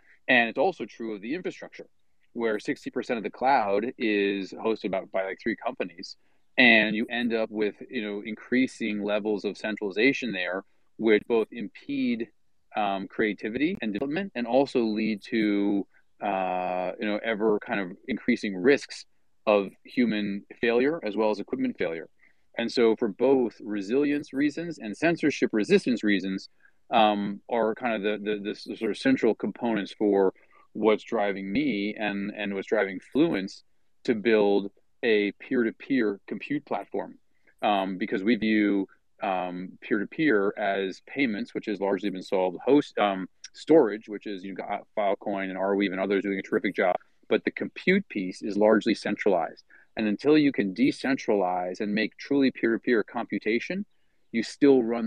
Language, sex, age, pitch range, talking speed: English, male, 30-49, 100-120 Hz, 160 wpm